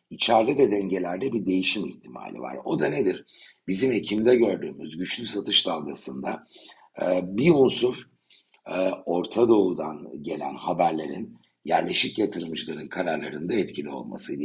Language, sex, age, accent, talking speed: Turkish, male, 60-79, native, 110 wpm